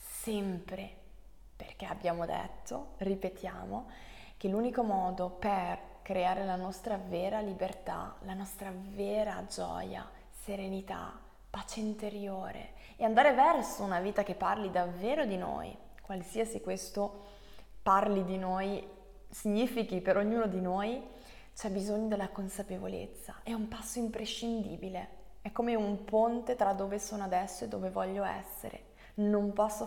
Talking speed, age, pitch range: 125 wpm, 20-39, 195-225 Hz